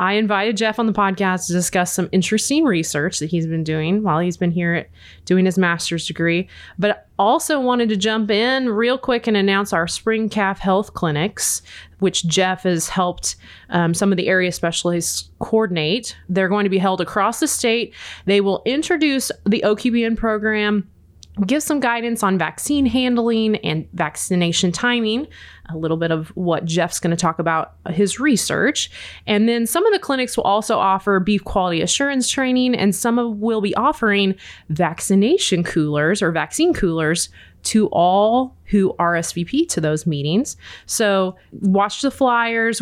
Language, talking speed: English, 170 wpm